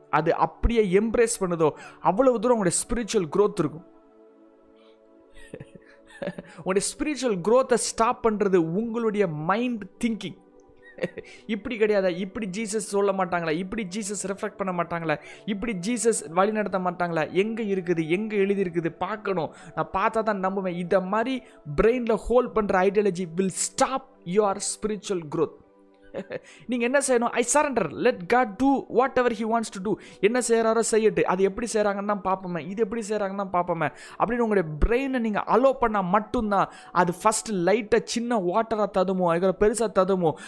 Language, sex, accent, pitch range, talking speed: Tamil, male, native, 180-230 Hz, 140 wpm